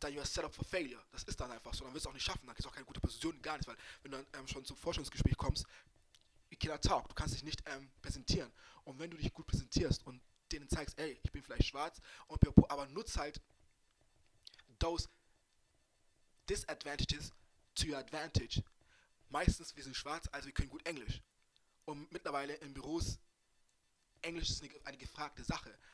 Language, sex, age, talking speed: German, male, 20-39, 185 wpm